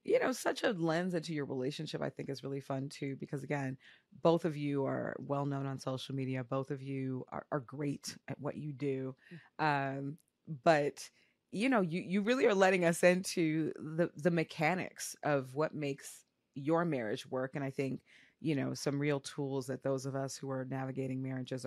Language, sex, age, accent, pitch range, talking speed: English, female, 30-49, American, 135-160 Hz, 195 wpm